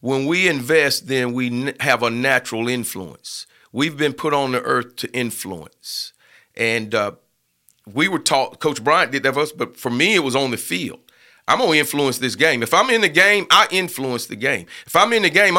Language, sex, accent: English, male, American